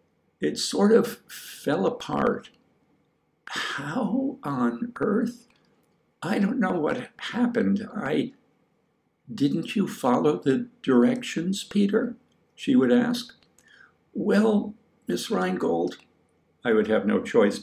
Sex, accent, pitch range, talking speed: male, American, 205-245 Hz, 105 wpm